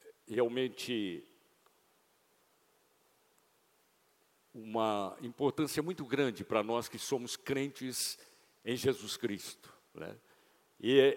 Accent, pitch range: Brazilian, 130-175 Hz